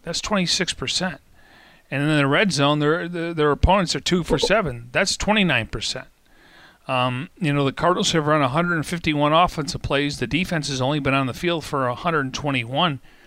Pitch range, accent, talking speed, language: 130-155 Hz, American, 165 wpm, English